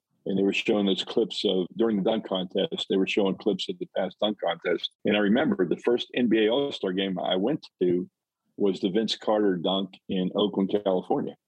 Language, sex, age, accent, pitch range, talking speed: English, male, 50-69, American, 95-110 Hz, 205 wpm